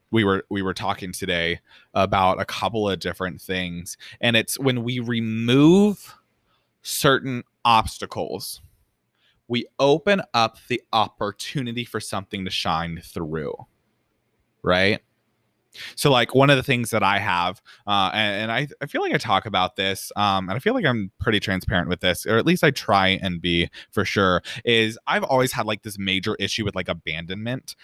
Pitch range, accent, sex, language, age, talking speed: 95-125 Hz, American, male, English, 20-39, 170 wpm